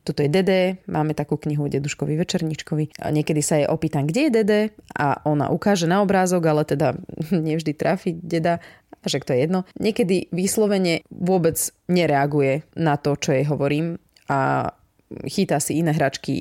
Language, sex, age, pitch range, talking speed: Slovak, female, 20-39, 150-190 Hz, 160 wpm